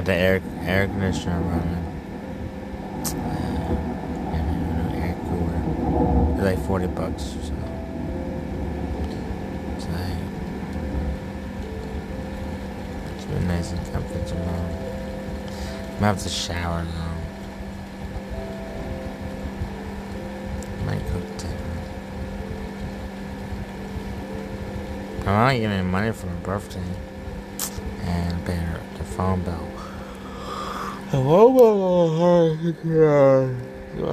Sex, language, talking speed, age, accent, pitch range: male, English, 85 wpm, 30-49, American, 85-100 Hz